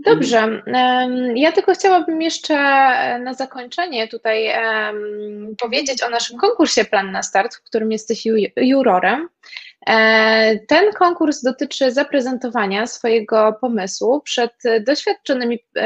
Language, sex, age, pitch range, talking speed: Polish, female, 20-39, 210-250 Hz, 105 wpm